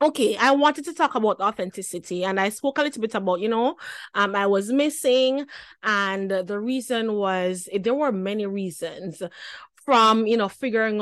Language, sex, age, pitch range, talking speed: English, female, 20-39, 195-255 Hz, 175 wpm